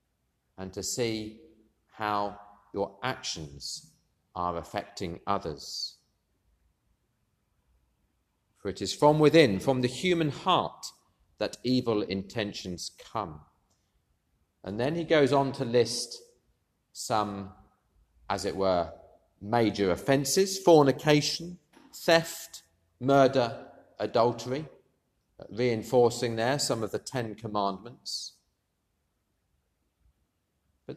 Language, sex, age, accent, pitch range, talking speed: English, male, 40-59, British, 95-135 Hz, 90 wpm